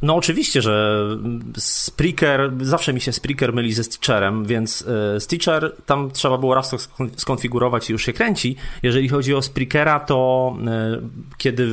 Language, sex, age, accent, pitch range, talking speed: Polish, male, 30-49, native, 115-140 Hz, 150 wpm